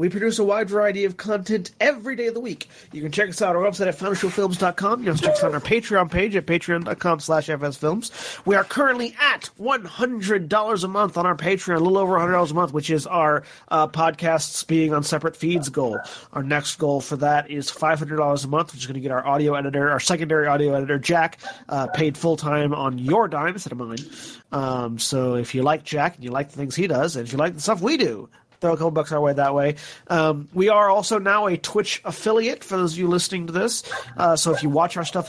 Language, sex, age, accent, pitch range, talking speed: English, male, 30-49, American, 145-195 Hz, 245 wpm